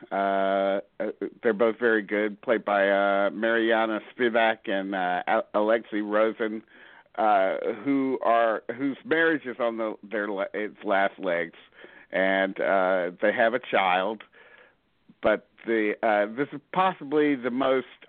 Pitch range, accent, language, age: 100-120 Hz, American, English, 50-69